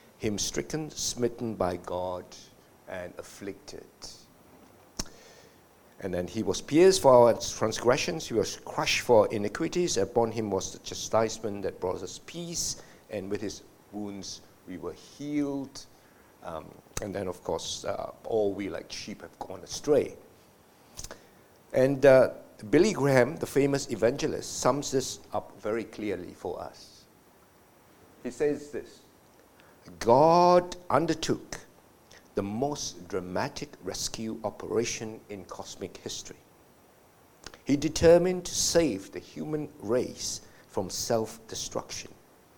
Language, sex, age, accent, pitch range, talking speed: English, male, 60-79, Malaysian, 105-140 Hz, 120 wpm